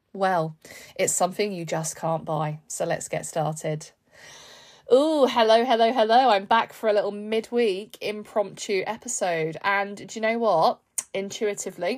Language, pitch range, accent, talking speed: English, 170-225 Hz, British, 145 wpm